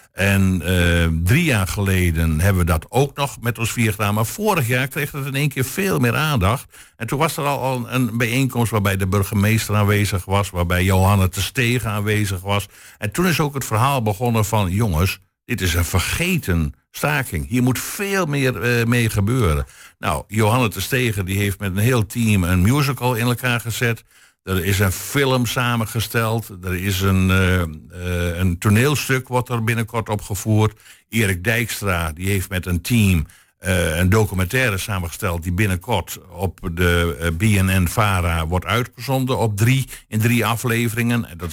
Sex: male